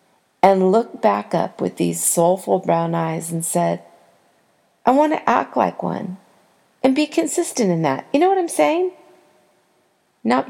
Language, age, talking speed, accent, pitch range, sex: English, 40-59, 160 wpm, American, 180-255 Hz, female